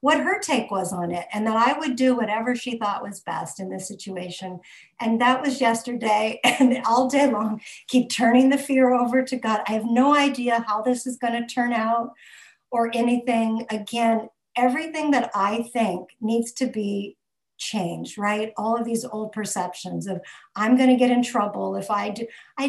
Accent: American